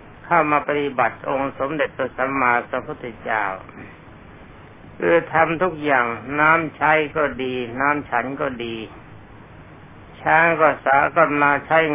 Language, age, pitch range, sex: Thai, 60-79, 120-150 Hz, male